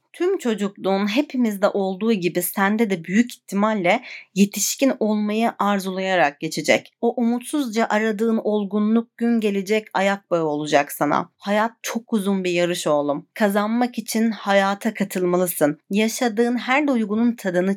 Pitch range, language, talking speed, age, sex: 195-235 Hz, Turkish, 125 wpm, 40-59, female